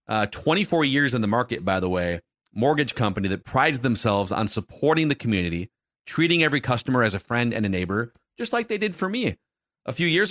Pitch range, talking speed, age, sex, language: 100-130 Hz, 210 wpm, 30-49, male, English